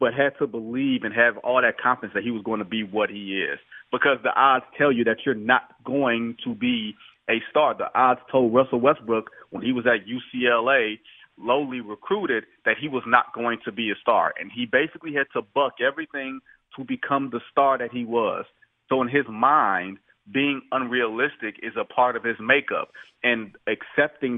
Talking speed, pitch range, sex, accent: 195 wpm, 115-140 Hz, male, American